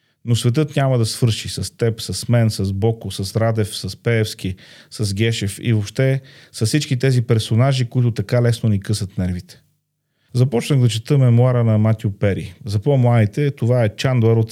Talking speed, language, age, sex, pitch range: 175 wpm, Bulgarian, 40-59, male, 105-125 Hz